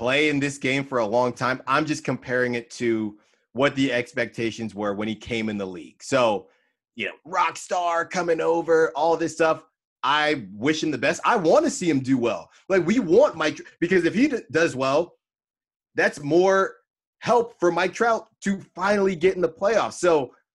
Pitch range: 125-165 Hz